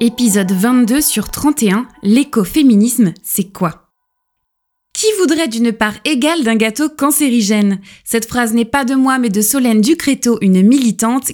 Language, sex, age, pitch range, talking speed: French, female, 20-39, 195-265 Hz, 145 wpm